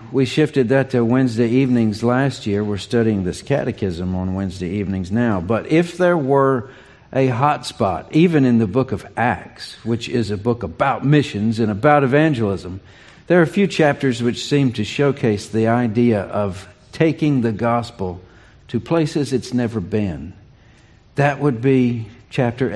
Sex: male